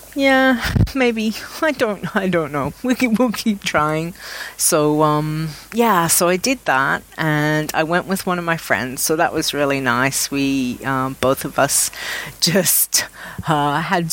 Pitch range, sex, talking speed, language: 155-230 Hz, female, 165 wpm, English